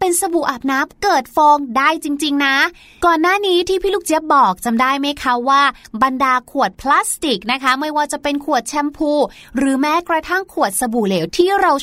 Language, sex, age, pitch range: Thai, female, 20-39, 260-330 Hz